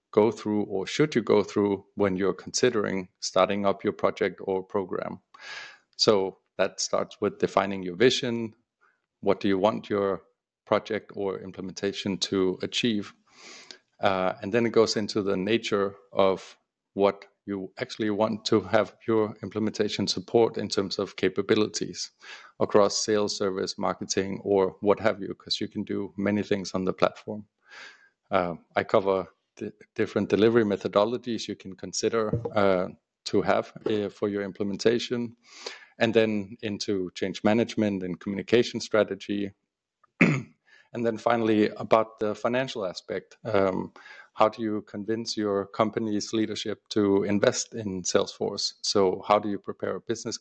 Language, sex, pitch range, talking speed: English, male, 100-110 Hz, 145 wpm